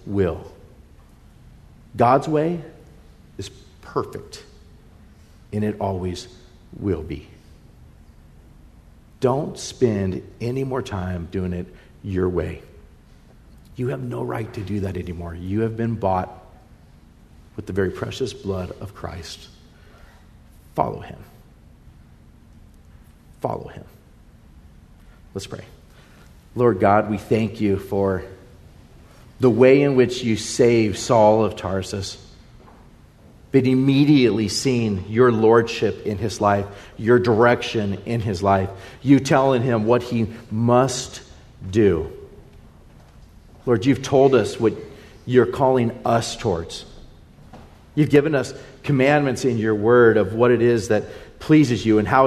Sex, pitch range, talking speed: male, 95-125 Hz, 120 wpm